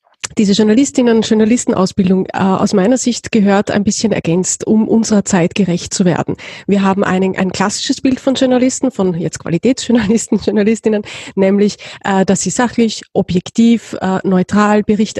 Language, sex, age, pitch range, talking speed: German, female, 30-49, 195-235 Hz, 155 wpm